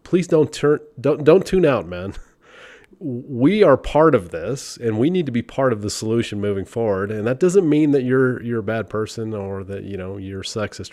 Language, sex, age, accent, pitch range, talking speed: English, male, 30-49, American, 100-145 Hz, 220 wpm